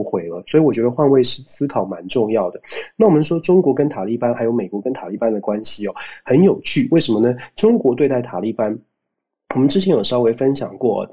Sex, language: male, Chinese